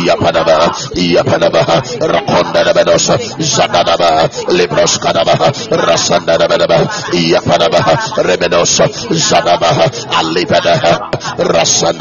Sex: male